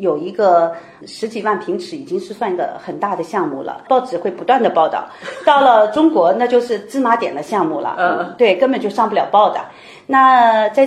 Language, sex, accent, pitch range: Chinese, female, native, 215-315 Hz